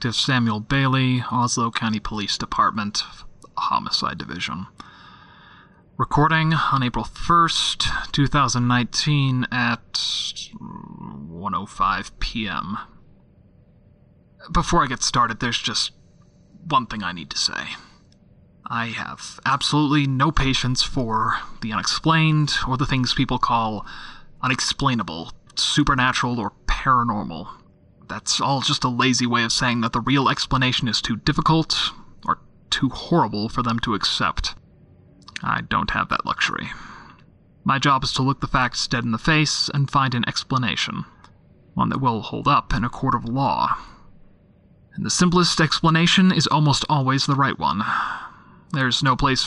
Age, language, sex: 30-49, English, male